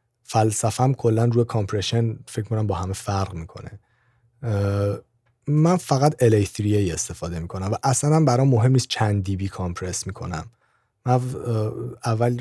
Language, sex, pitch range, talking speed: Persian, male, 105-125 Hz, 125 wpm